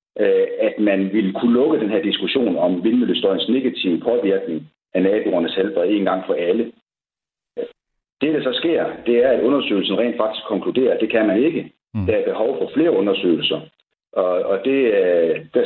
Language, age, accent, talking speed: Danish, 60-79, native, 175 wpm